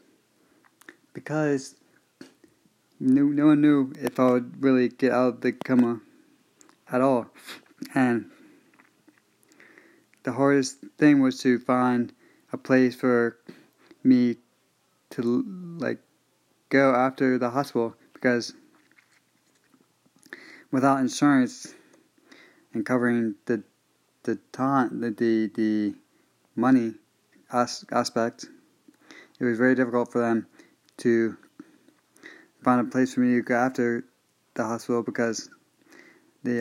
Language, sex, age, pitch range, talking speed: English, male, 30-49, 120-140 Hz, 110 wpm